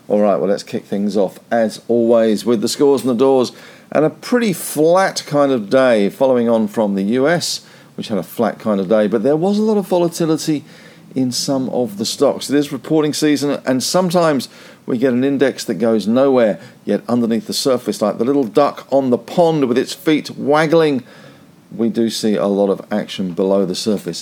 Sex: male